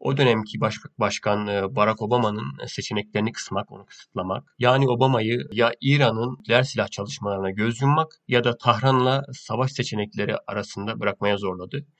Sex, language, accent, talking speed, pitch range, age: male, Turkish, native, 135 wpm, 105-130 Hz, 40-59